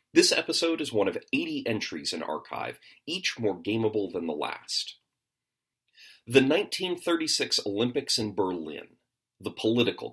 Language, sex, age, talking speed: English, male, 40-59, 130 wpm